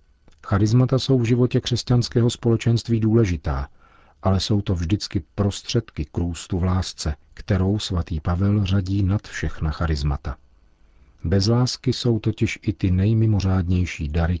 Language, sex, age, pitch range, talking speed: Czech, male, 40-59, 80-100 Hz, 125 wpm